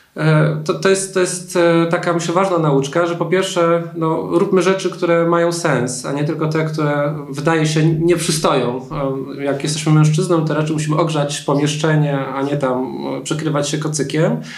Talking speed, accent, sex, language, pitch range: 175 wpm, native, male, Polish, 150-175 Hz